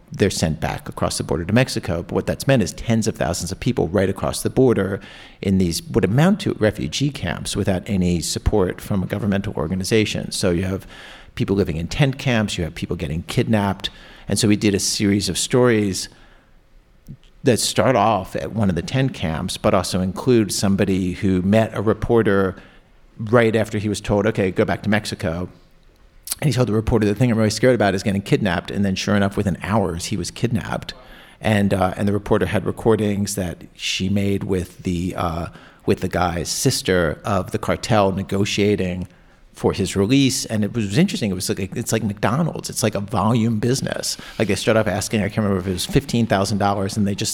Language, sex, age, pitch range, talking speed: English, male, 50-69, 95-110 Hz, 210 wpm